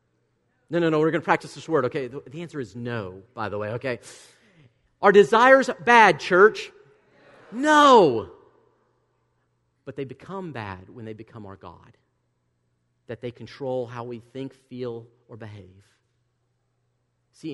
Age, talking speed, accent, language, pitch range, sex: 40-59, 145 wpm, American, English, 115-155 Hz, male